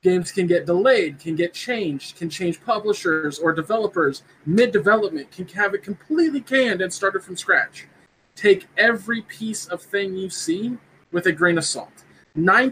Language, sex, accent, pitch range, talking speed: English, male, American, 175-230 Hz, 165 wpm